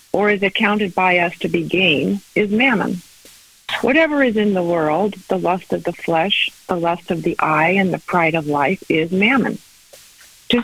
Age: 50-69